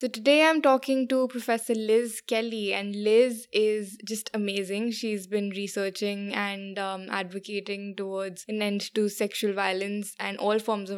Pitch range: 195-220 Hz